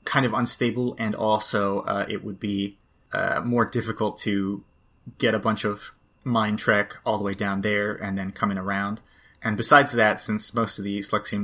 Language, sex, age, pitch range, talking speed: English, male, 30-49, 100-110 Hz, 195 wpm